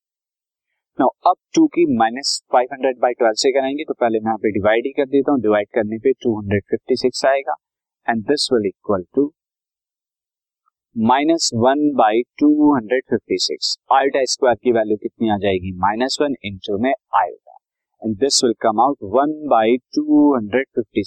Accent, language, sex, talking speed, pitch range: native, Hindi, male, 70 wpm, 110-140 Hz